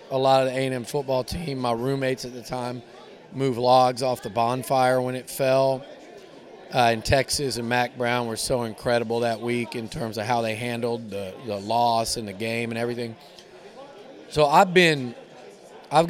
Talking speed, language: 185 wpm, English